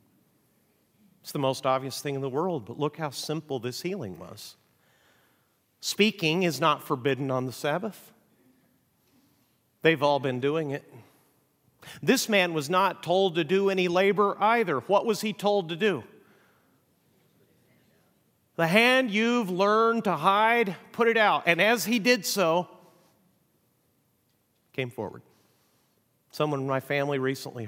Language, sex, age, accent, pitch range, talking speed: English, male, 40-59, American, 125-170 Hz, 140 wpm